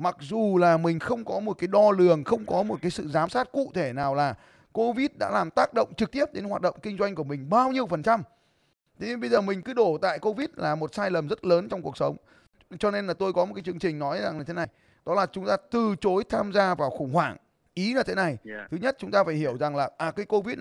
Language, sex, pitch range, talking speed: Vietnamese, male, 175-235 Hz, 280 wpm